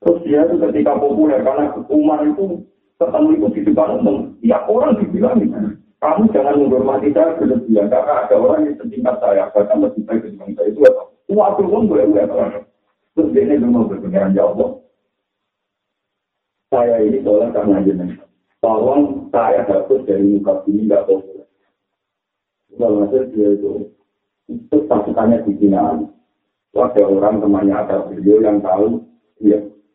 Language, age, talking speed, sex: Malay, 50-69, 155 wpm, male